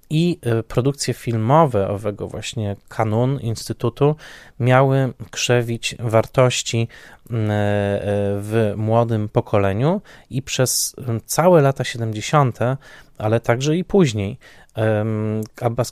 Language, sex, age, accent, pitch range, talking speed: Polish, male, 20-39, native, 105-125 Hz, 85 wpm